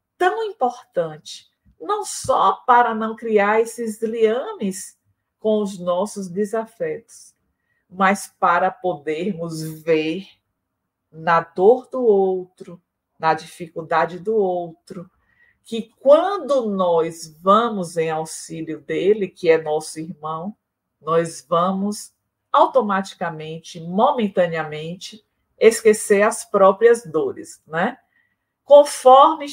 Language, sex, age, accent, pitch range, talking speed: Portuguese, female, 50-69, Brazilian, 165-235 Hz, 95 wpm